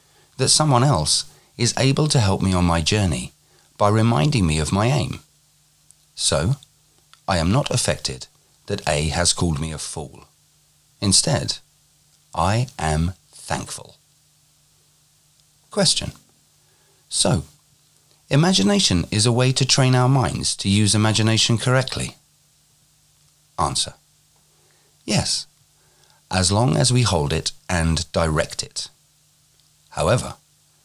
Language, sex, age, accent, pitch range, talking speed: English, male, 40-59, British, 90-145 Hz, 115 wpm